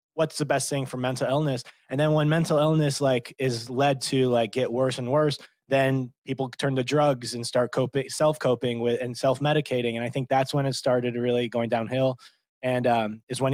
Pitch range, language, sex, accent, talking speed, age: 120-140 Hz, English, male, American, 215 wpm, 20-39